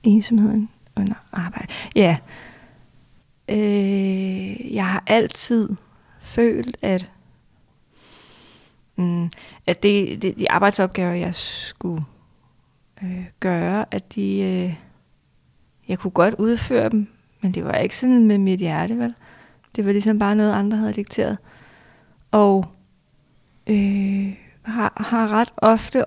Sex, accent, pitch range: female, native, 185-220 Hz